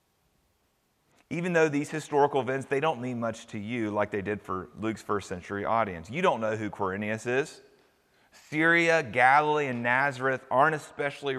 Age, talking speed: 30-49, 165 wpm